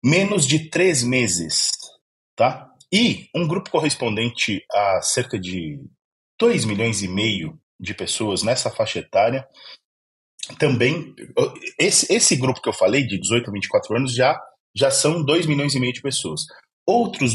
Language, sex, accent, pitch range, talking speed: Portuguese, male, Brazilian, 95-125 Hz, 150 wpm